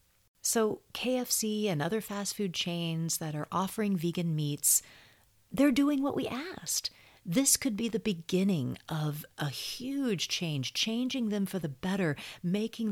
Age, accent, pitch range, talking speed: 40-59, American, 155-215 Hz, 150 wpm